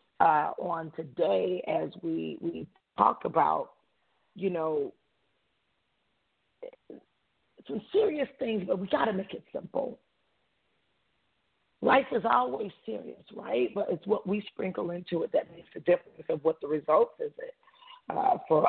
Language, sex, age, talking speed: English, female, 40-59, 140 wpm